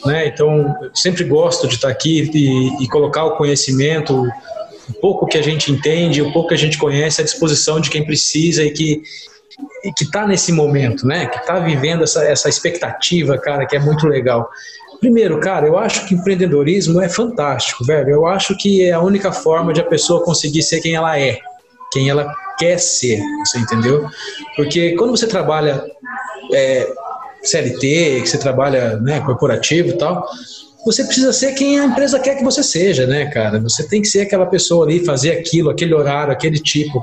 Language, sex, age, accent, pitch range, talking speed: Portuguese, male, 20-39, Brazilian, 150-195 Hz, 190 wpm